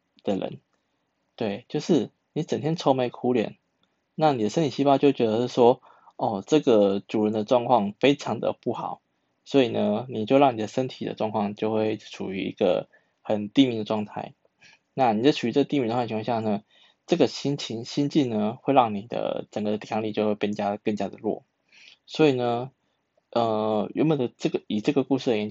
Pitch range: 105-130 Hz